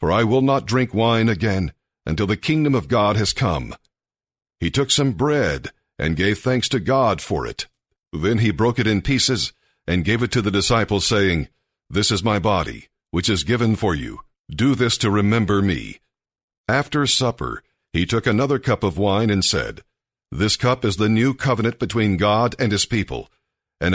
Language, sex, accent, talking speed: English, male, American, 185 wpm